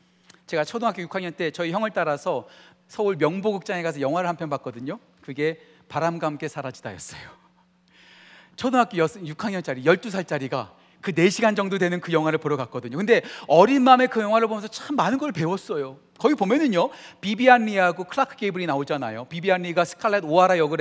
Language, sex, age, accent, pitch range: Korean, male, 40-59, native, 175-270 Hz